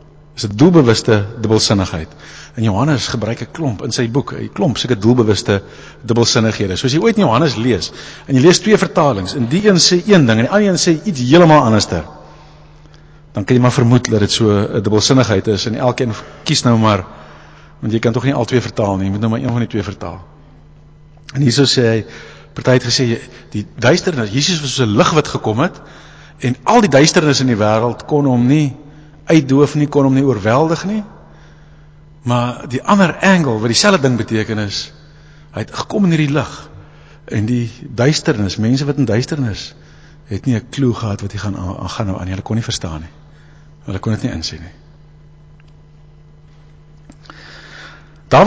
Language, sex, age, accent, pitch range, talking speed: English, male, 50-69, Dutch, 110-150 Hz, 185 wpm